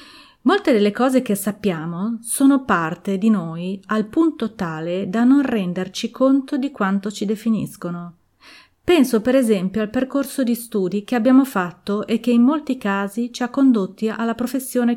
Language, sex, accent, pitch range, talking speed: Italian, female, native, 185-250 Hz, 160 wpm